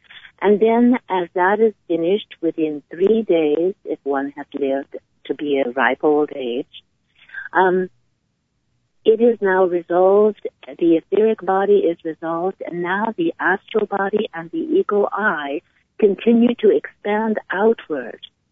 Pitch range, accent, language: 165-220 Hz, American, English